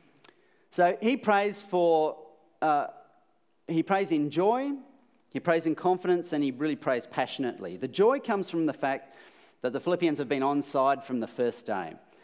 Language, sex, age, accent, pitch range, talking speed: English, male, 30-49, Australian, 110-160 Hz, 170 wpm